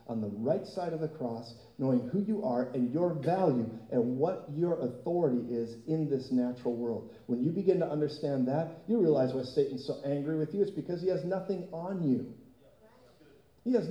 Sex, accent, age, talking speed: male, American, 50-69, 200 wpm